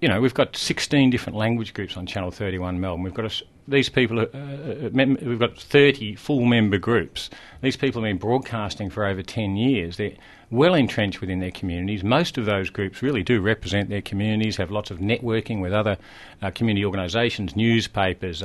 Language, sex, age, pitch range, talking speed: English, male, 50-69, 95-120 Hz, 205 wpm